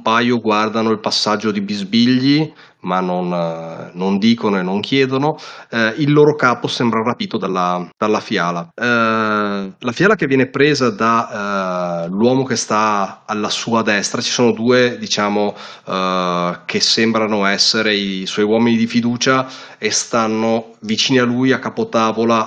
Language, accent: Italian, native